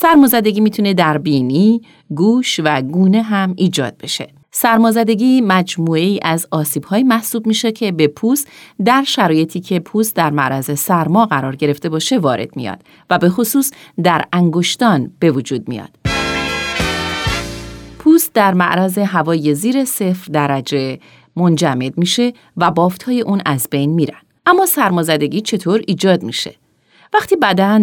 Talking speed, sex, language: 130 wpm, female, Persian